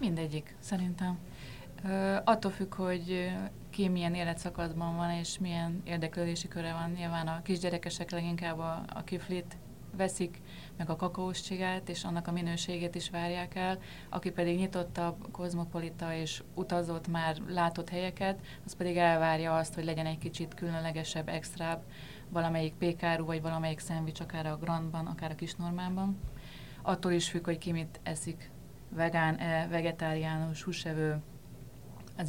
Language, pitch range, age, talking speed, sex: Hungarian, 160-180 Hz, 30-49, 140 wpm, female